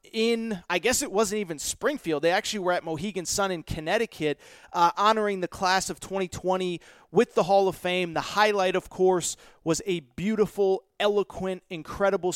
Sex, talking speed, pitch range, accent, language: male, 170 wpm, 170-215 Hz, American, English